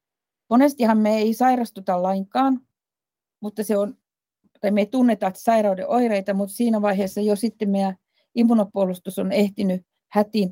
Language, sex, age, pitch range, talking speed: Finnish, female, 50-69, 195-235 Hz, 120 wpm